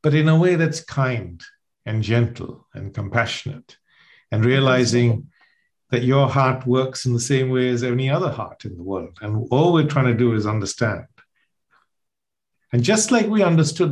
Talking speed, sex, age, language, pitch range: 170 wpm, male, 50-69, English, 115-145 Hz